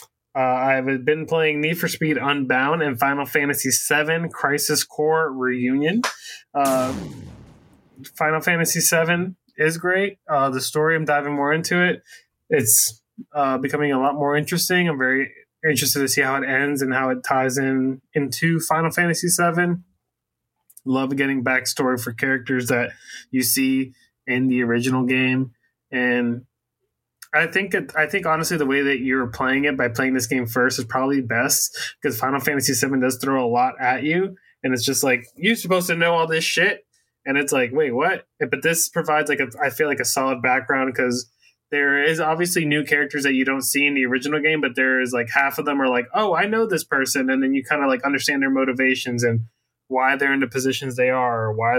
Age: 20-39